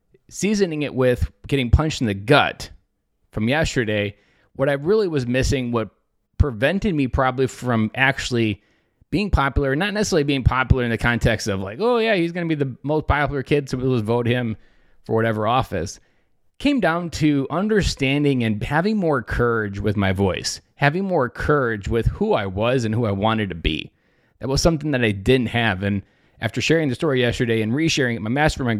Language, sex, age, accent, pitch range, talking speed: English, male, 30-49, American, 110-145 Hz, 190 wpm